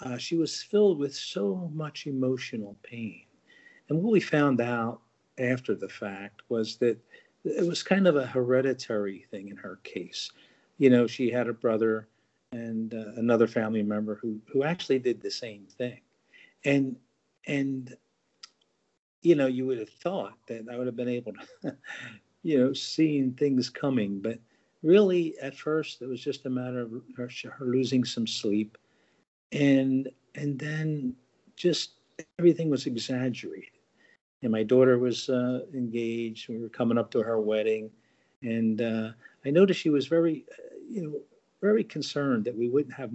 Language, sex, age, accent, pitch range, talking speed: English, male, 50-69, American, 115-145 Hz, 165 wpm